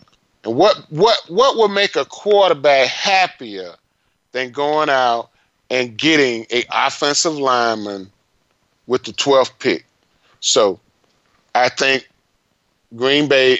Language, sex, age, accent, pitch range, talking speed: English, male, 30-49, American, 115-150 Hz, 110 wpm